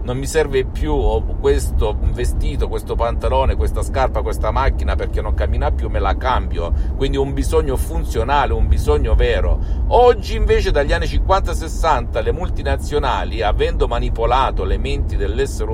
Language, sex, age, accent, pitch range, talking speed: Italian, male, 50-69, native, 75-100 Hz, 145 wpm